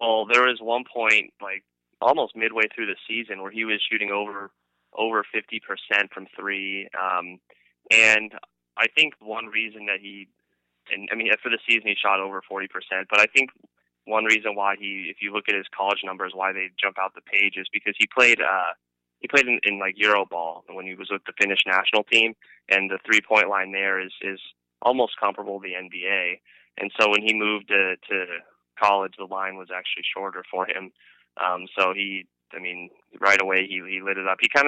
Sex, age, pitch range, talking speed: male, 20-39, 95-105 Hz, 205 wpm